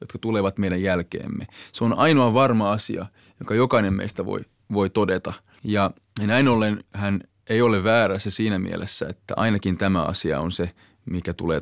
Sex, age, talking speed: male, 20-39, 170 wpm